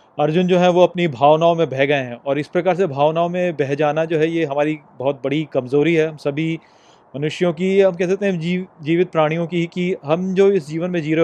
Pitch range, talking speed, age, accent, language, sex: 150-180 Hz, 245 wpm, 30-49, native, Hindi, male